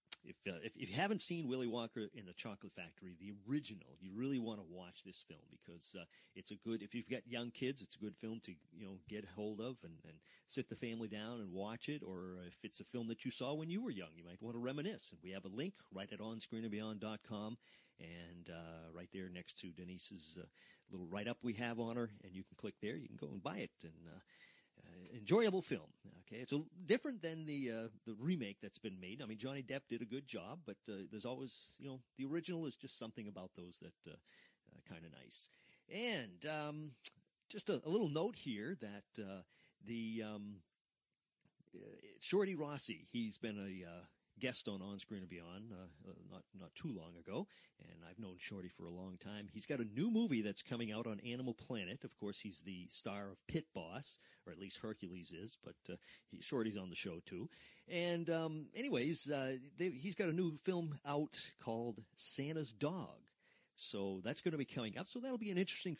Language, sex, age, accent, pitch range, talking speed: English, male, 40-59, American, 95-140 Hz, 220 wpm